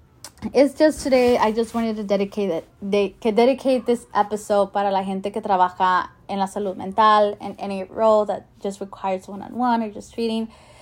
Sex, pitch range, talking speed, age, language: female, 200-230 Hz, 185 wpm, 20-39, English